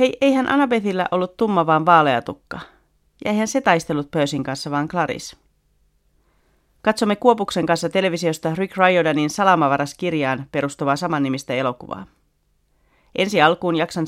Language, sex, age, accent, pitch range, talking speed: Finnish, female, 40-59, native, 140-175 Hz, 120 wpm